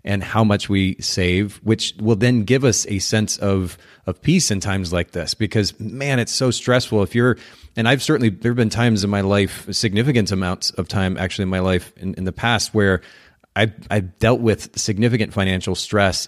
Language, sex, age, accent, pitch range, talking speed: English, male, 30-49, American, 95-115 Hz, 205 wpm